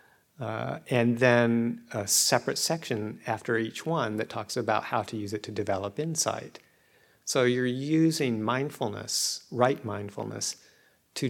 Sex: male